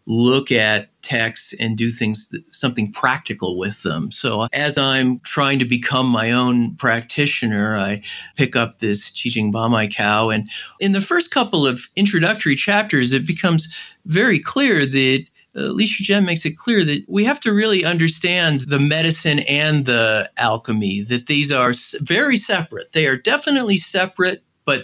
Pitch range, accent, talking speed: 115-160 Hz, American, 160 wpm